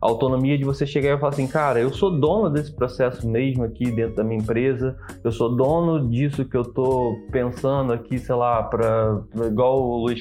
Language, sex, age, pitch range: Portuguese, male, 20-39, 125-165 Hz